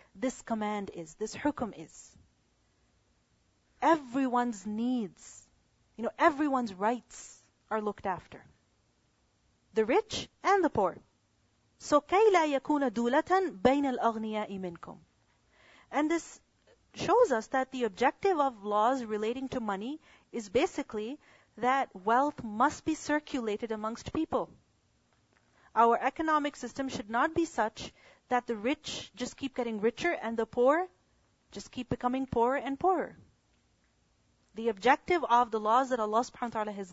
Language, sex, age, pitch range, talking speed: English, female, 40-59, 230-295 Hz, 135 wpm